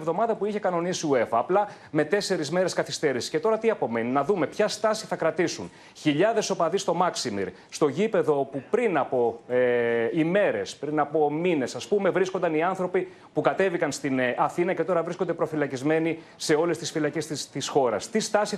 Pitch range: 150-205 Hz